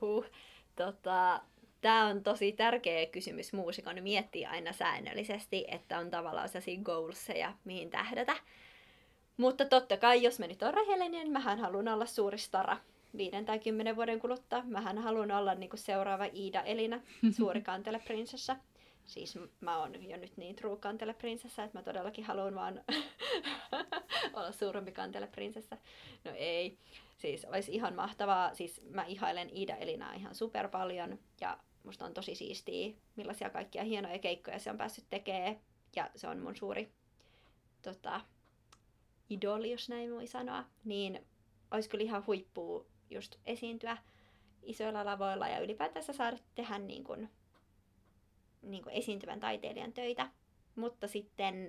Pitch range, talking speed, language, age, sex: 185-230 Hz, 140 wpm, Finnish, 30-49, female